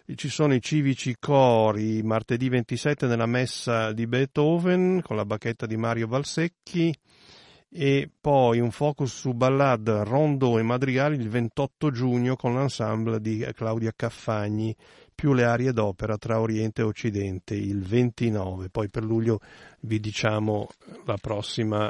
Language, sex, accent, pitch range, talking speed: Italian, male, native, 110-130 Hz, 140 wpm